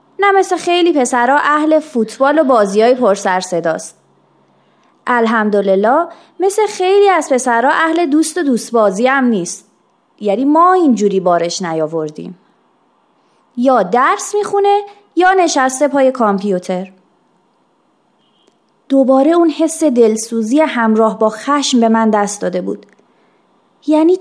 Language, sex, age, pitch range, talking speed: Persian, female, 30-49, 220-315 Hz, 110 wpm